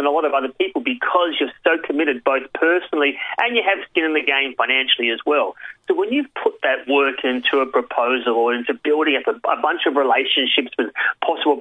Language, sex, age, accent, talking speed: English, male, 30-49, Australian, 210 wpm